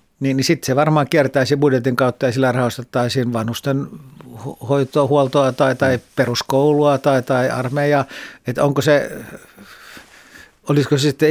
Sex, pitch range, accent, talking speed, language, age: male, 120-145 Hz, native, 125 wpm, Finnish, 60-79